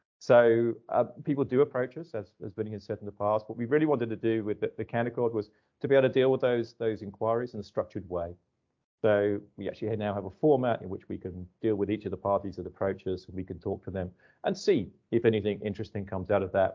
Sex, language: male, English